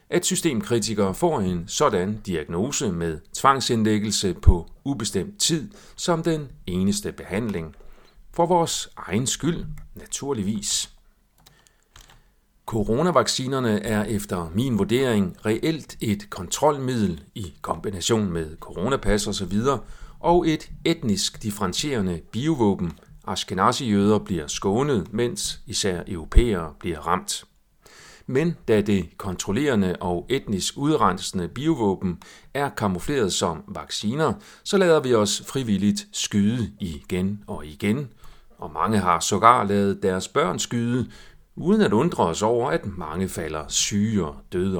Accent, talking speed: native, 115 wpm